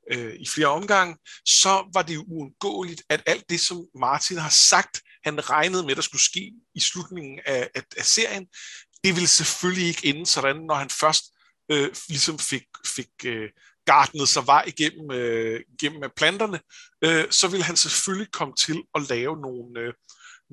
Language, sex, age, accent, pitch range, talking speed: Danish, male, 50-69, native, 145-185 Hz, 170 wpm